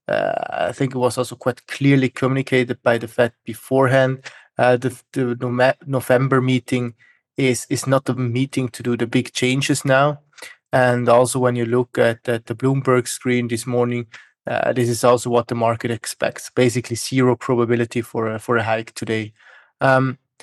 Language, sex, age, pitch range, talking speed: English, male, 20-39, 120-135 Hz, 175 wpm